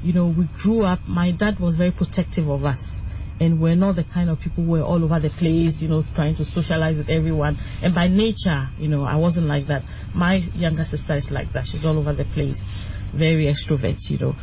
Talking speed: 235 wpm